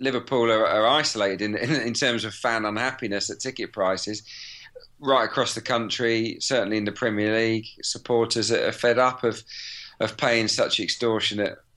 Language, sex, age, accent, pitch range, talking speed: English, male, 40-59, British, 110-130 Hz, 165 wpm